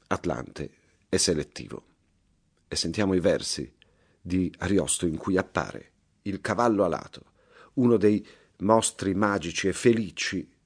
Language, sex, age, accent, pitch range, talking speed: Italian, male, 40-59, native, 85-110 Hz, 120 wpm